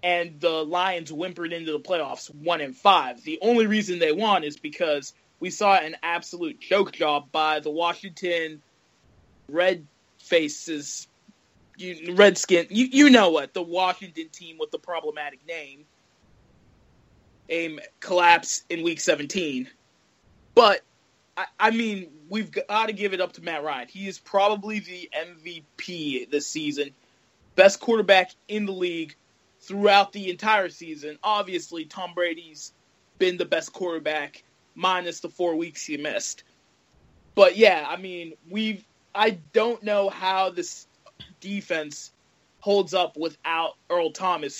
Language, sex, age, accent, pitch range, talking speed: English, male, 20-39, American, 155-195 Hz, 140 wpm